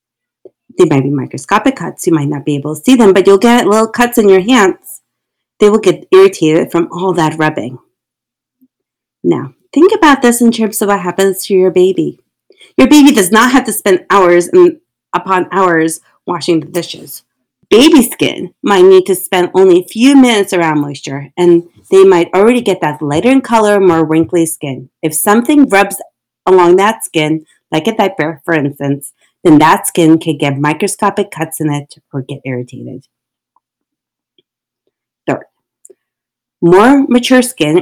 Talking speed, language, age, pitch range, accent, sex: 170 wpm, English, 30-49, 160-220 Hz, American, female